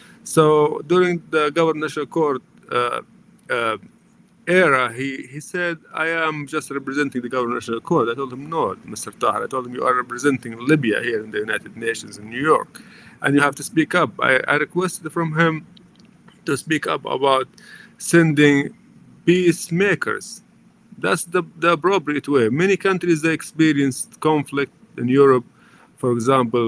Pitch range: 130-180 Hz